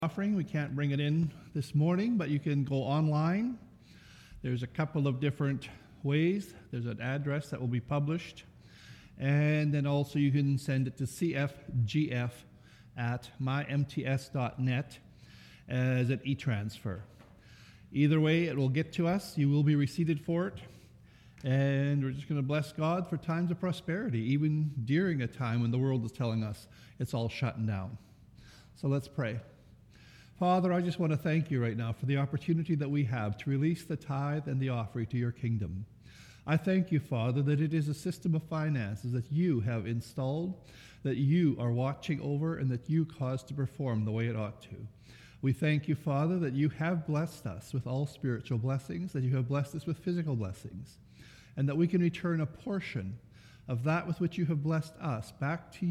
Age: 50-69